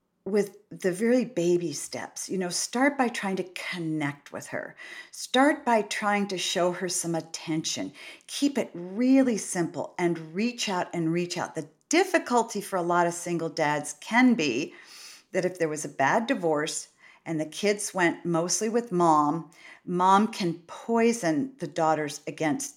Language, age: English, 50-69